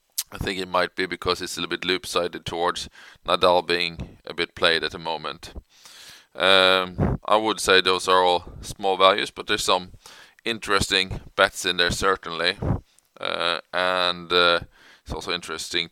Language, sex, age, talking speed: English, male, 20-39, 160 wpm